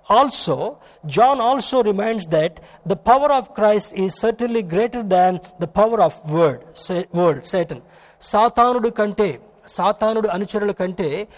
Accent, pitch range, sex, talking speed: native, 170-225 Hz, male, 120 wpm